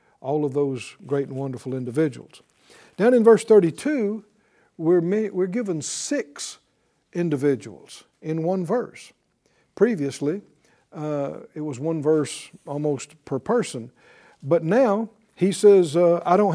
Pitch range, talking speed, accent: 150-210 Hz, 130 wpm, American